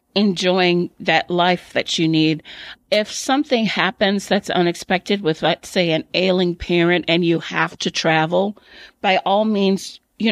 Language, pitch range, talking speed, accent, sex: English, 170-205 Hz, 150 wpm, American, female